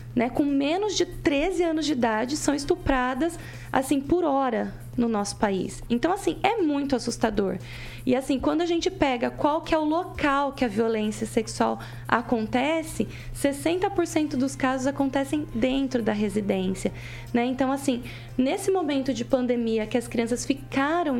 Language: Portuguese